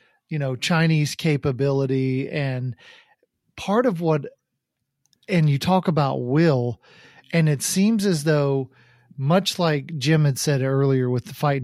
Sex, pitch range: male, 130-160 Hz